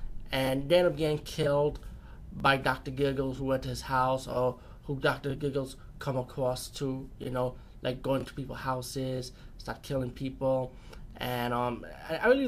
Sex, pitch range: male, 125-140 Hz